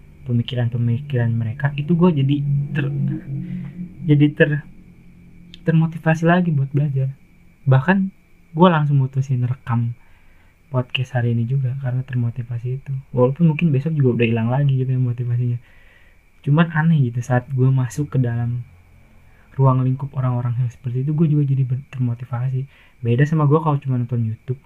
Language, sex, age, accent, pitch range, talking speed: Indonesian, male, 20-39, native, 120-150 Hz, 145 wpm